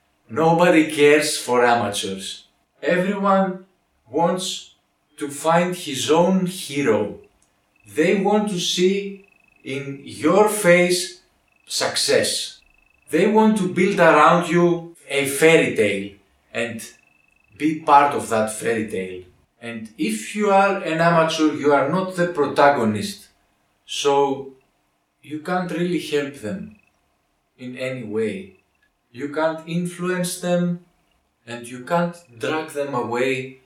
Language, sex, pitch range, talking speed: English, male, 110-170 Hz, 115 wpm